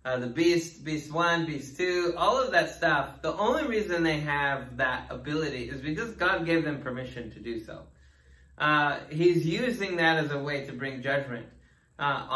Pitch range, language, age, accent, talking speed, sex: 135-170 Hz, English, 20-39, American, 185 wpm, male